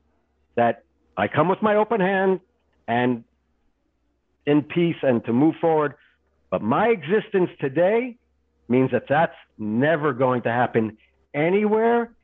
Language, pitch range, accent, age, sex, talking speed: English, 105-175 Hz, American, 60-79, male, 125 wpm